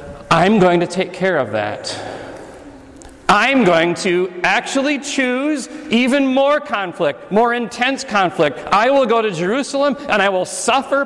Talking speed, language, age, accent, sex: 145 wpm, English, 40-59, American, male